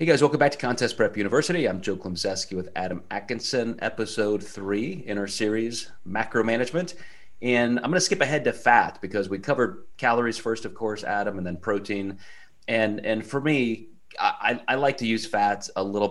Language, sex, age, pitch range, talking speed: English, male, 30-49, 95-115 Hz, 195 wpm